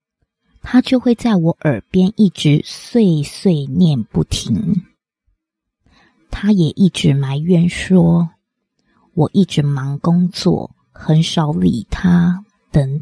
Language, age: Chinese, 20-39